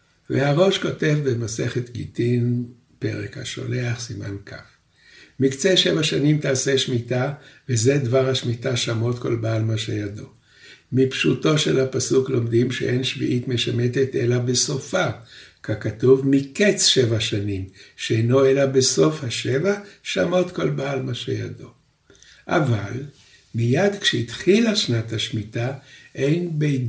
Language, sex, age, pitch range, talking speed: Hebrew, male, 60-79, 120-140 Hz, 110 wpm